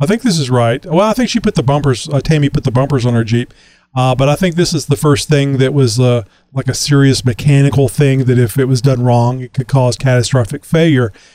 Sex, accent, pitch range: male, American, 125-150 Hz